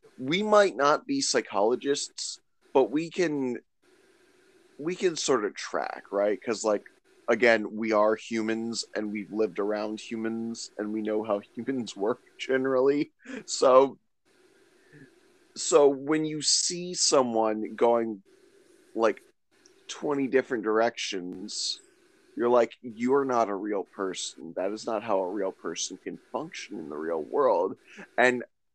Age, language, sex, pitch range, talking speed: 30-49, English, male, 110-175 Hz, 135 wpm